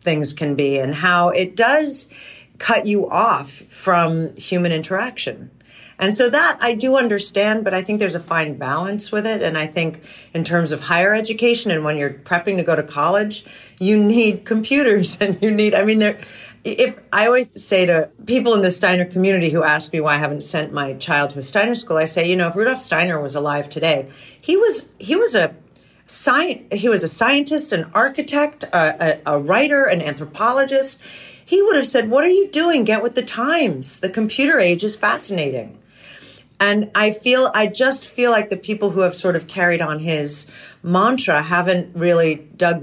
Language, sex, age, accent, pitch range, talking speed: English, female, 40-59, American, 150-215 Hz, 195 wpm